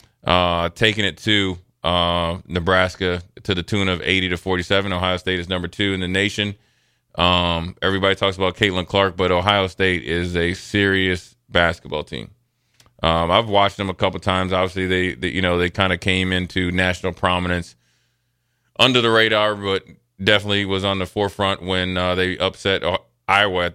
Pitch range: 90-100 Hz